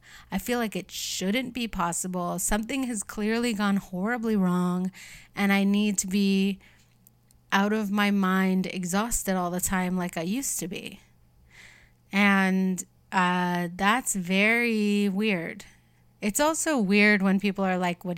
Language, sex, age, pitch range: English, female, 30-49, 180-220 Hz